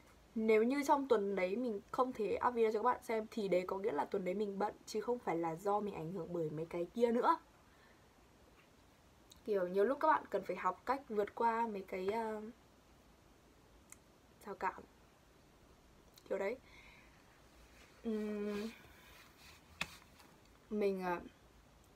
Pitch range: 195-235 Hz